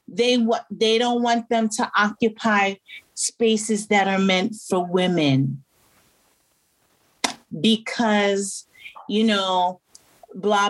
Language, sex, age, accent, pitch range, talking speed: English, female, 40-59, American, 200-250 Hz, 100 wpm